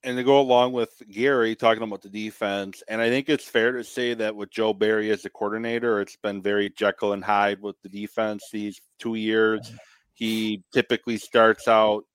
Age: 30-49